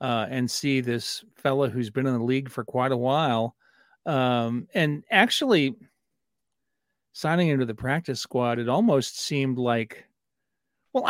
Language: English